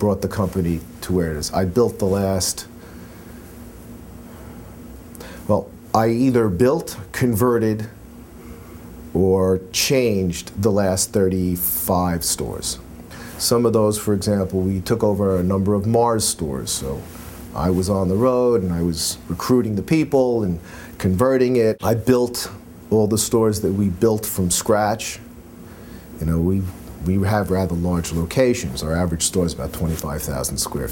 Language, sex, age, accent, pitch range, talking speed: English, male, 40-59, American, 85-110 Hz, 145 wpm